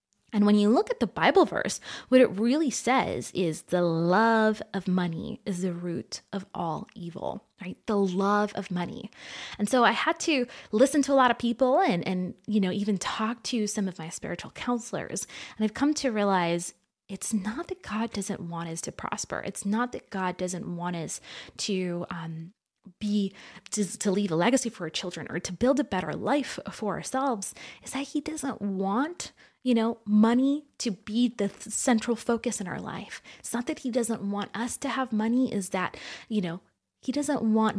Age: 20-39